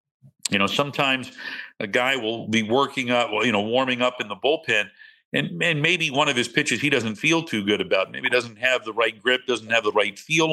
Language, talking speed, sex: English, 240 wpm, male